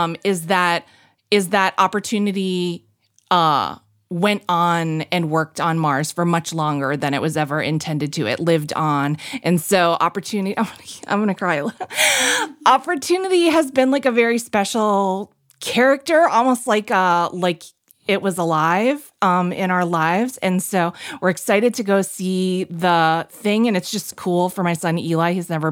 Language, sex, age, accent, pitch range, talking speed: English, female, 30-49, American, 160-195 Hz, 165 wpm